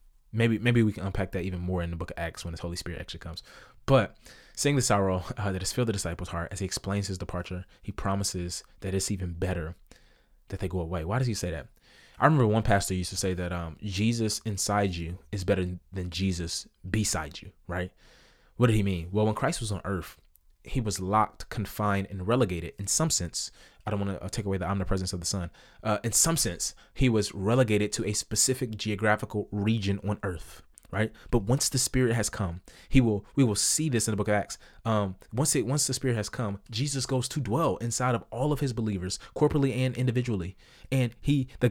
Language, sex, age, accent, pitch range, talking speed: English, male, 20-39, American, 95-120 Hz, 225 wpm